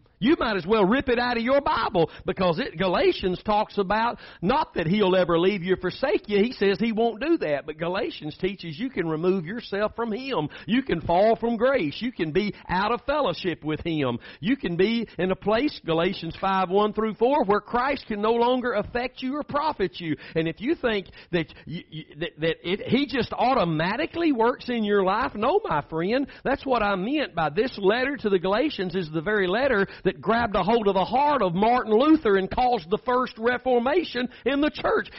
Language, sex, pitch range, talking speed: English, male, 185-250 Hz, 215 wpm